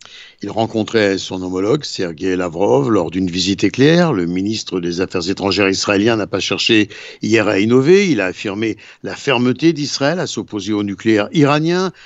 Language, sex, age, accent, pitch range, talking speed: Italian, male, 60-79, French, 105-155 Hz, 165 wpm